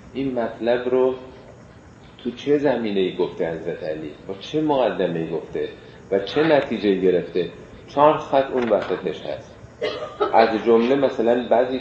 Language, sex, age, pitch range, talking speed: Persian, male, 40-59, 95-135 Hz, 140 wpm